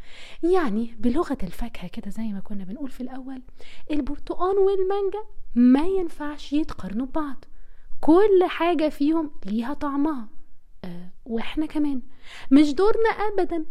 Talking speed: 120 wpm